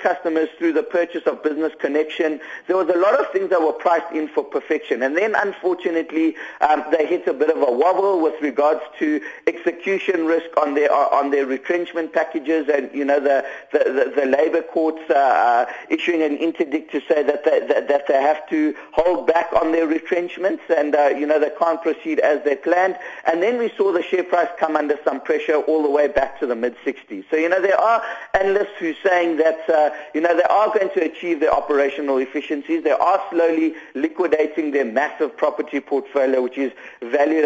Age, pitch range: 50-69, 150-195 Hz